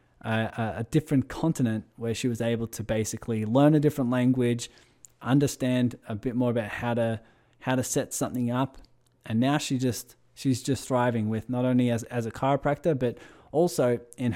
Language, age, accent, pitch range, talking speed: English, 20-39, Australian, 115-135 Hz, 180 wpm